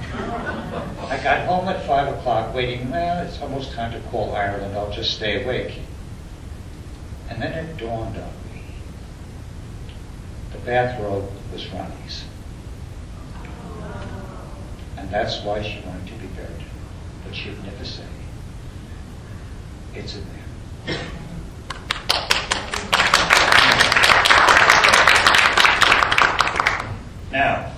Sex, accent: male, American